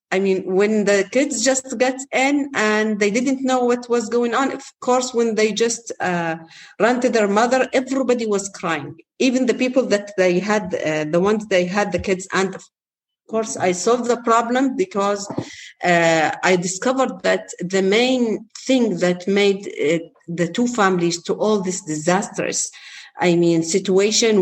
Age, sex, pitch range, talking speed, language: 40-59, female, 175-235 Hz, 170 wpm, English